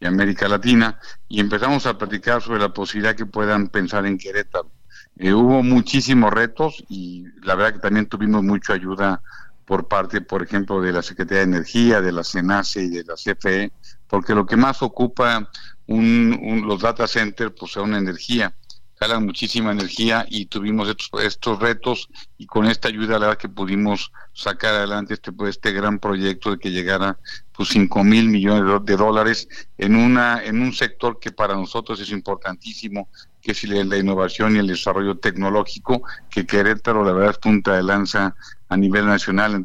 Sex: male